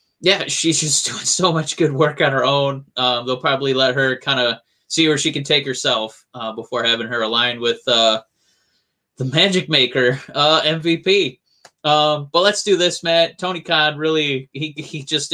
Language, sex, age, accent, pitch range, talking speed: English, male, 20-39, American, 135-185 Hz, 190 wpm